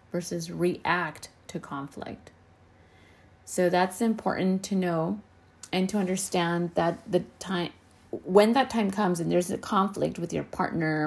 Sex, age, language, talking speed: female, 30-49, English, 140 wpm